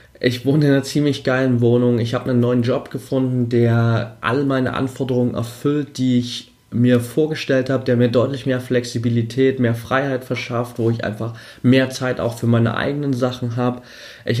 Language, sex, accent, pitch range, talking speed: German, male, German, 120-135 Hz, 180 wpm